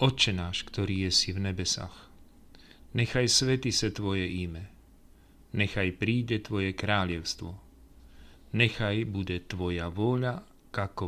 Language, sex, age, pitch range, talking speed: Slovak, male, 40-59, 90-115 Hz, 115 wpm